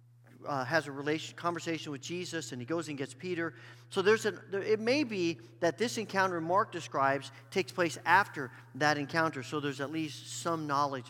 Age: 40-59